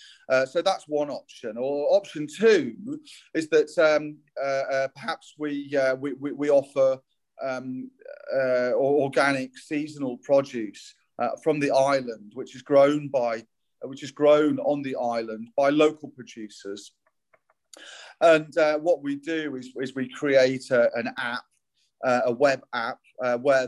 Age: 30-49